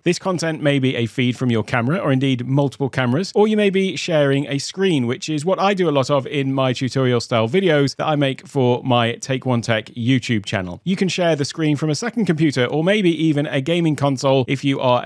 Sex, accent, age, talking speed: male, British, 40-59, 245 wpm